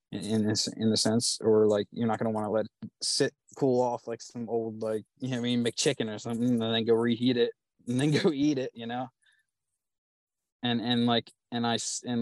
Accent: American